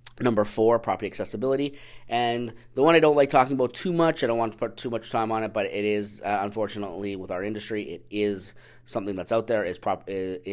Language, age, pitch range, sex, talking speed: English, 30-49, 100-120 Hz, male, 240 wpm